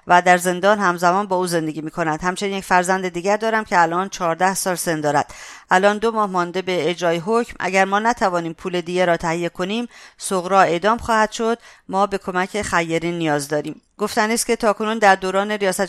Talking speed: 195 wpm